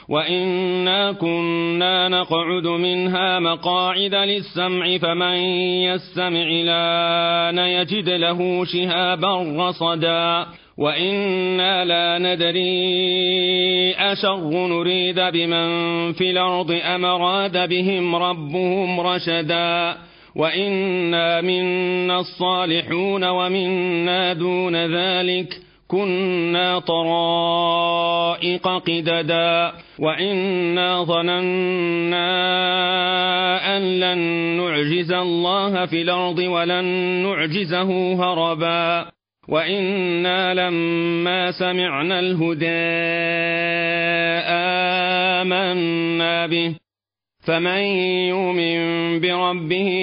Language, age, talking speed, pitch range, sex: Arabic, 40-59, 65 wpm, 170-180 Hz, male